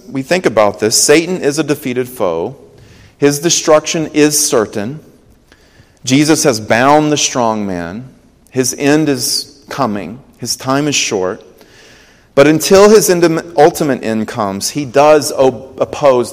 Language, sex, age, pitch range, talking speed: English, male, 40-59, 100-140 Hz, 130 wpm